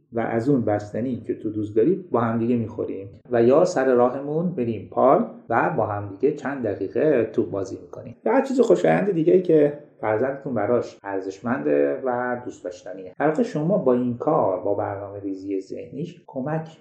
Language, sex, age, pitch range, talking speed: Persian, male, 30-49, 110-150 Hz, 170 wpm